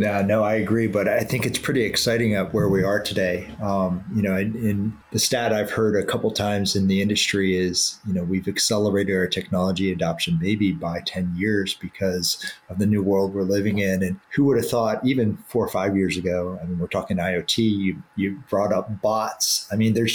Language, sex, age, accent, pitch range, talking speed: English, male, 30-49, American, 95-110 Hz, 225 wpm